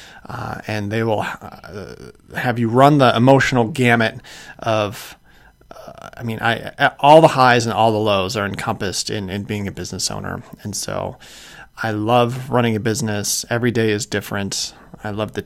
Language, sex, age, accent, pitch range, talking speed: English, male, 30-49, American, 105-130 Hz, 180 wpm